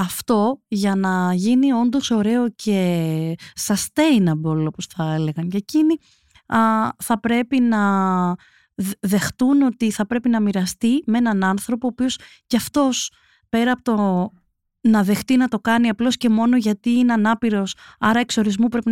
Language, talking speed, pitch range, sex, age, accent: Greek, 145 wpm, 195-240 Hz, female, 20-39, native